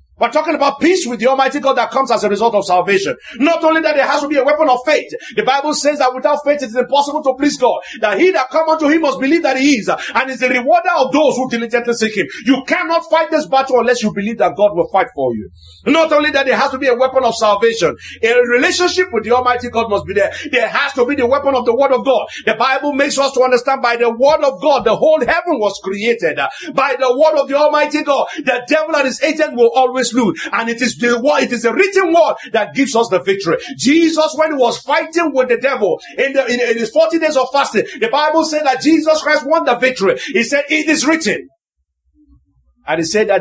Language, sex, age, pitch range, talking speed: English, male, 50-69, 225-300 Hz, 255 wpm